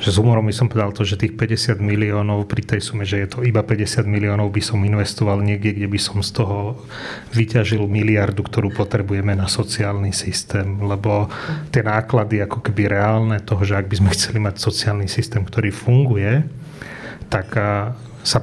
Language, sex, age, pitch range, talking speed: Slovak, male, 30-49, 105-115 Hz, 180 wpm